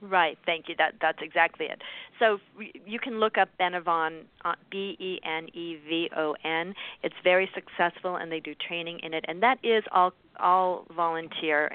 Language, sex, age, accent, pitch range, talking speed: English, female, 50-69, American, 160-185 Hz, 190 wpm